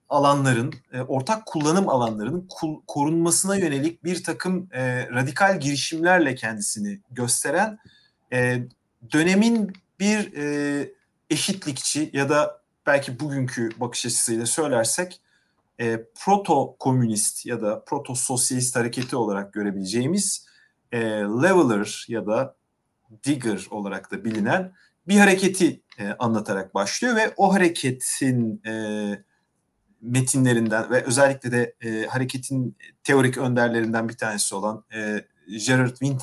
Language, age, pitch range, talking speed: Turkish, 40-59, 115-165 Hz, 105 wpm